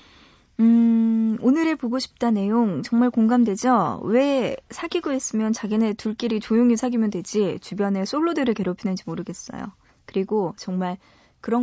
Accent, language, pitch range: native, Korean, 200-260 Hz